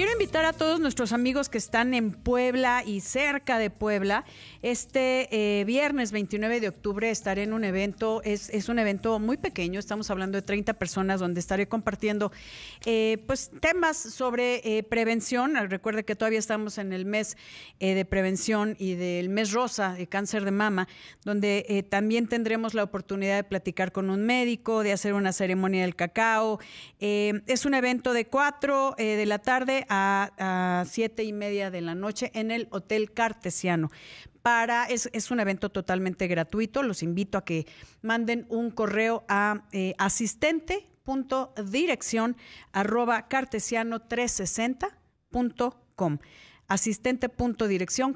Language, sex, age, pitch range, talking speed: Spanish, female, 40-59, 195-240 Hz, 150 wpm